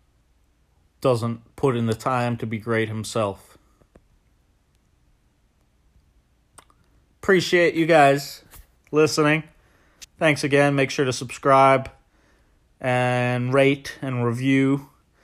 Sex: male